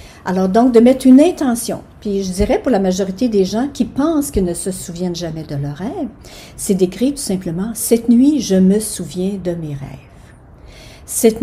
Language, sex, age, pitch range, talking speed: French, female, 60-79, 185-230 Hz, 205 wpm